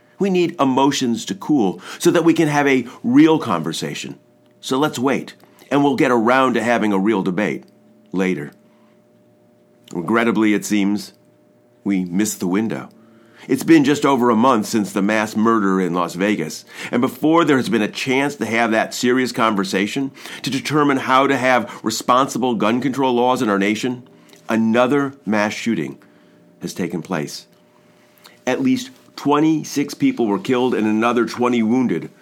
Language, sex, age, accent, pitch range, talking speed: English, male, 50-69, American, 95-135 Hz, 160 wpm